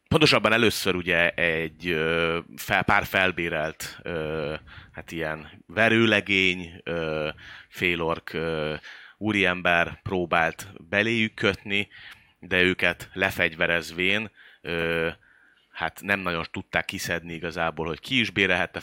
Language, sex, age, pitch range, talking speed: Hungarian, male, 30-49, 80-95 Hz, 85 wpm